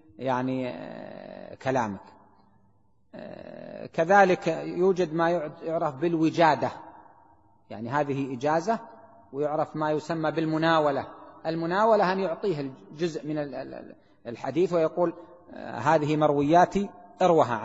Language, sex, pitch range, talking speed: Arabic, male, 135-175 Hz, 80 wpm